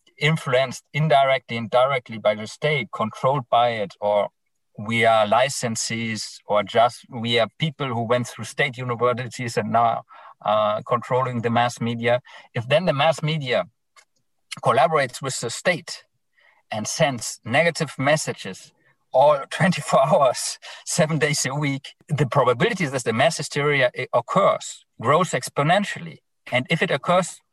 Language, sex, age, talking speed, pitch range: English, male, 50-69, 140 wpm, 120-155 Hz